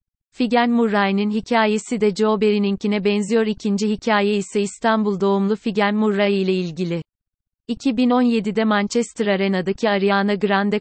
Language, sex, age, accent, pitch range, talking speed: Turkish, female, 40-59, native, 190-220 Hz, 115 wpm